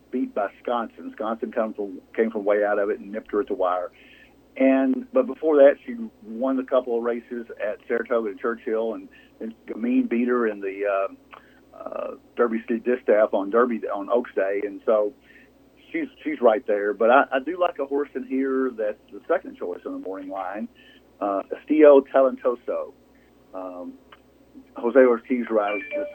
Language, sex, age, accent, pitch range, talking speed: English, male, 50-69, American, 105-135 Hz, 175 wpm